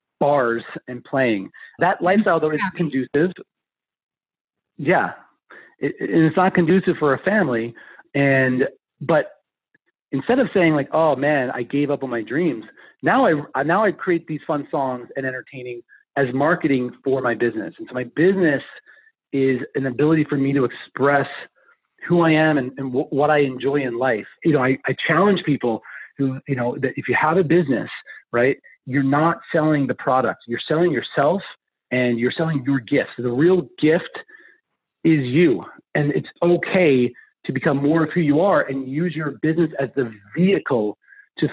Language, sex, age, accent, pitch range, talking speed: English, male, 30-49, American, 135-170 Hz, 175 wpm